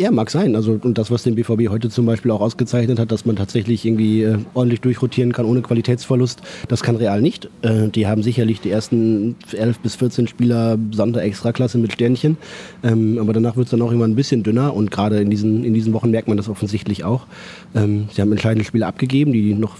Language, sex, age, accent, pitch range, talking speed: German, male, 30-49, German, 105-120 Hz, 225 wpm